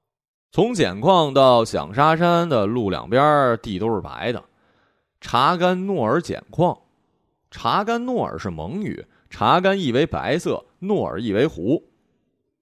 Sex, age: male, 20-39